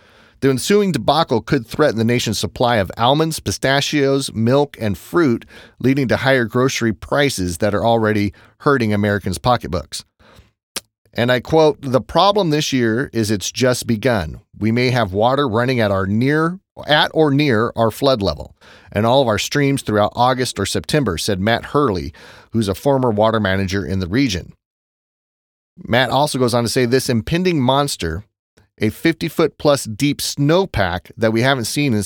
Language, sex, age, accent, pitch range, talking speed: English, male, 30-49, American, 100-135 Hz, 165 wpm